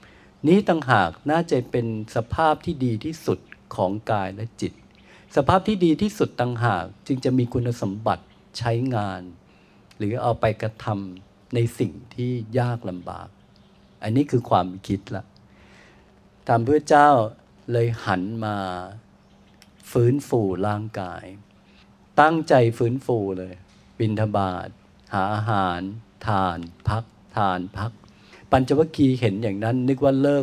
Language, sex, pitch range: Thai, male, 100-130 Hz